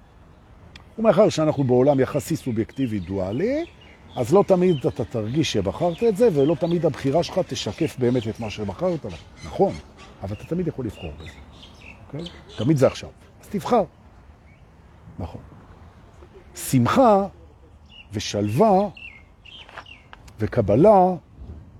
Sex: male